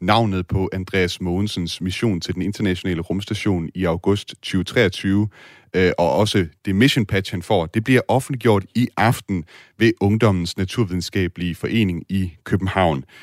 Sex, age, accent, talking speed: male, 30-49, native, 140 wpm